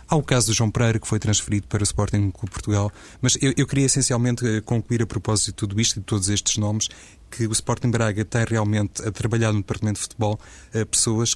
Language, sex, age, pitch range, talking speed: Portuguese, male, 20-39, 105-115 Hz, 240 wpm